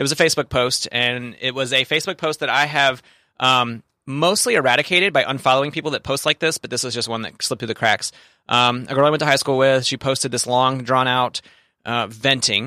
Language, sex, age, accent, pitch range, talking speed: English, male, 30-49, American, 120-150 Hz, 235 wpm